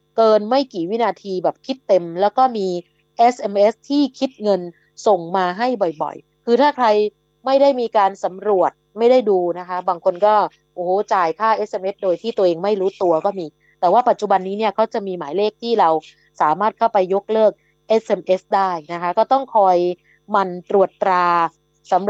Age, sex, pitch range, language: 20-39, female, 175-220 Hz, Thai